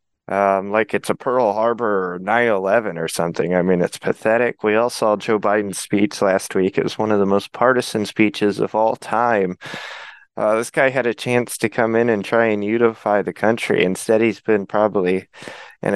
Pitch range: 100-120 Hz